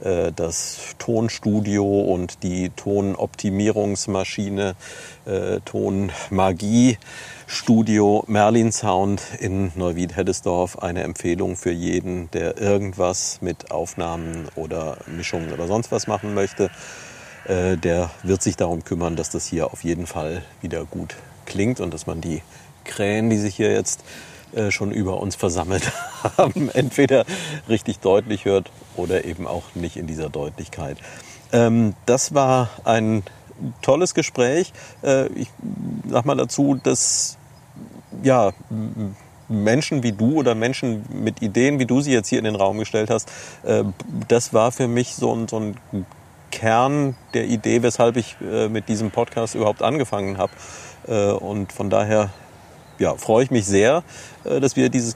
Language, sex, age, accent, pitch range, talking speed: German, male, 50-69, German, 95-130 Hz, 140 wpm